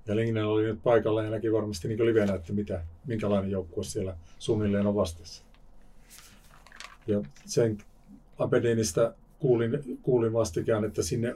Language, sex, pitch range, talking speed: Finnish, male, 95-120 Hz, 145 wpm